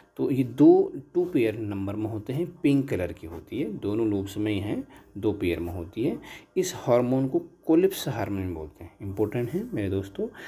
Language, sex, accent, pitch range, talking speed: Hindi, male, native, 100-145 Hz, 200 wpm